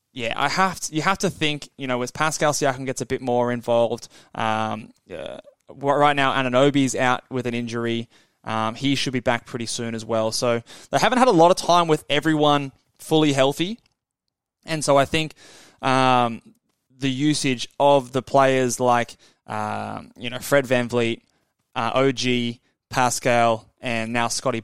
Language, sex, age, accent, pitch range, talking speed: English, male, 20-39, Australian, 115-140 Hz, 175 wpm